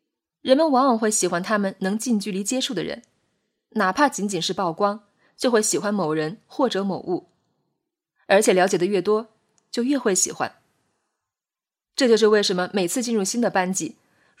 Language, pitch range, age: Chinese, 190-250 Hz, 20-39